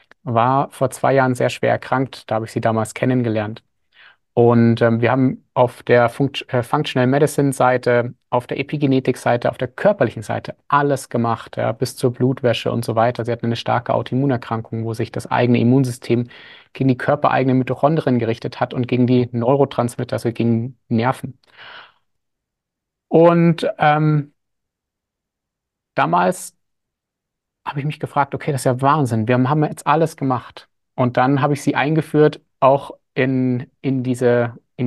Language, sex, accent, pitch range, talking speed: German, male, German, 120-140 Hz, 155 wpm